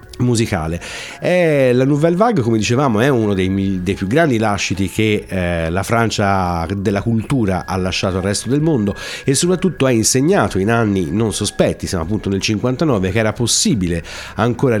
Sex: male